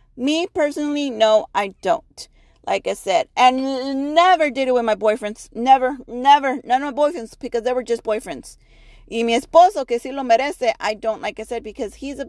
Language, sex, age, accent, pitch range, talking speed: English, female, 40-59, American, 215-285 Hz, 200 wpm